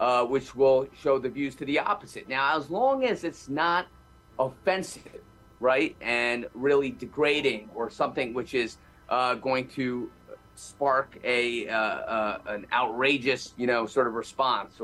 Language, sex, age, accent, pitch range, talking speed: English, male, 30-49, American, 115-145 Hz, 155 wpm